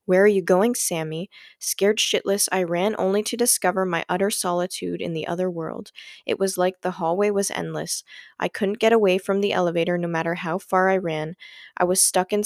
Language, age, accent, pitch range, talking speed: English, 20-39, American, 175-205 Hz, 205 wpm